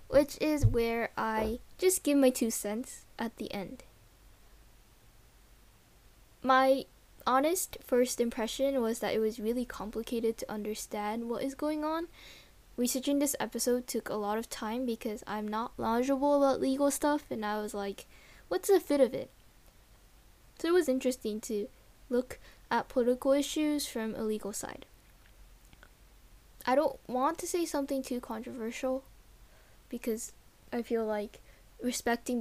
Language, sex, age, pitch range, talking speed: English, female, 10-29, 220-270 Hz, 145 wpm